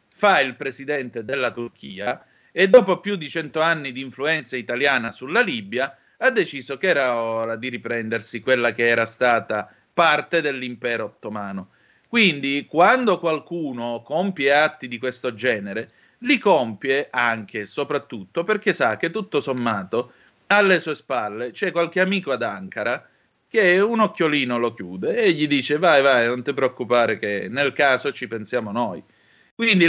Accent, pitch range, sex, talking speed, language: native, 125-170 Hz, male, 155 wpm, Italian